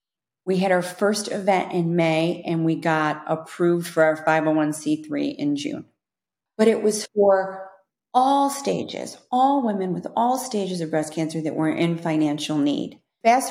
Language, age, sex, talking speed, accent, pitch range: English, 40-59, female, 160 wpm, American, 155-225 Hz